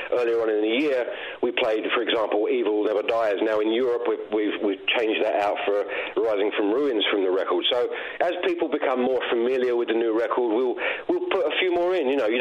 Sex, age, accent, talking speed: male, 40-59, British, 225 wpm